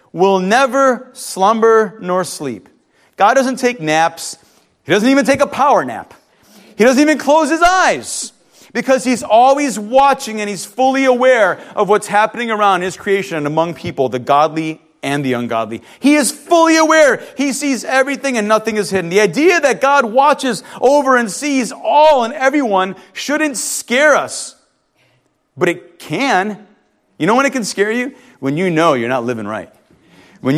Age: 30-49